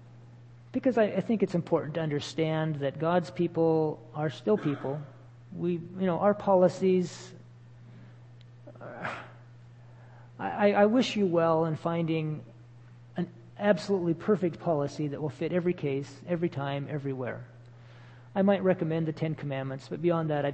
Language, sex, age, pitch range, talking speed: English, male, 40-59, 120-180 Hz, 140 wpm